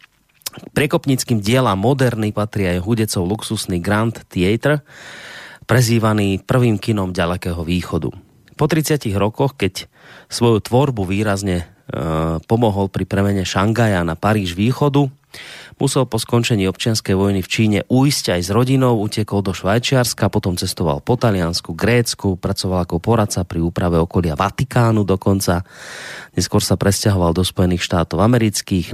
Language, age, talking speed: Slovak, 30-49, 130 wpm